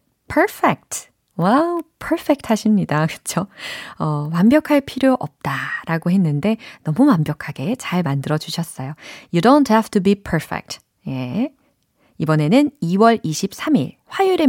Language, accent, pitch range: Korean, native, 150-245 Hz